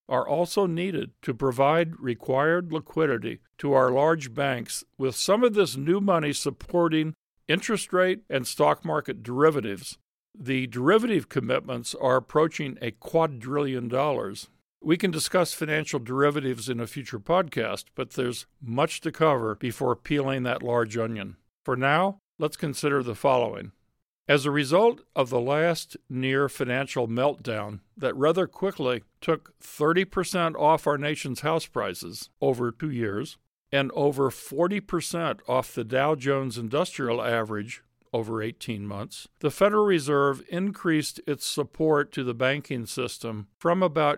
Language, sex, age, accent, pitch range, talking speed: English, male, 50-69, American, 125-160 Hz, 140 wpm